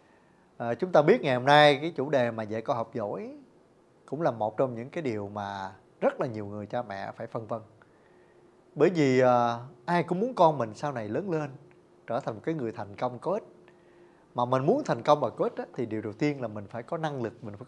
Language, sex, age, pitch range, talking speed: Vietnamese, male, 20-39, 120-175 Hz, 240 wpm